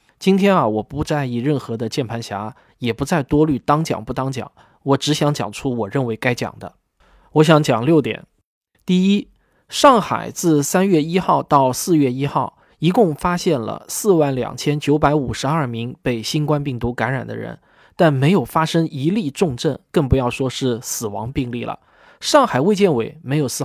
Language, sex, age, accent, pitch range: Chinese, male, 20-39, native, 130-165 Hz